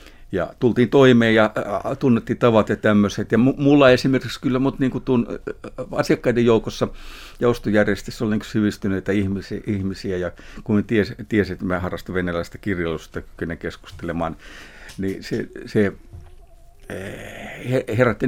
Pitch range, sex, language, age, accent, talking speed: 95-125 Hz, male, Finnish, 60-79, native, 120 wpm